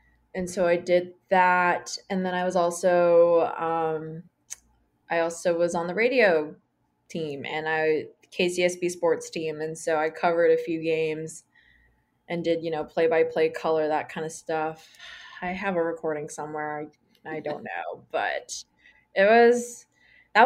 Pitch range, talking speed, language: 160-195 Hz, 160 wpm, English